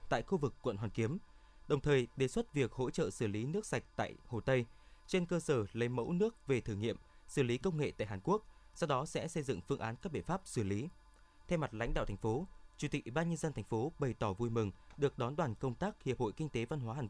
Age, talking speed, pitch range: 20-39, 275 wpm, 115-150 Hz